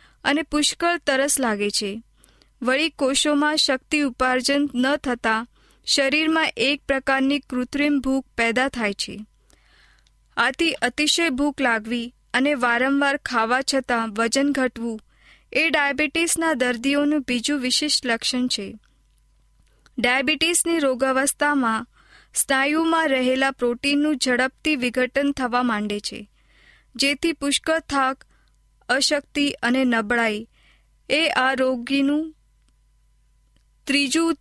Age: 20-39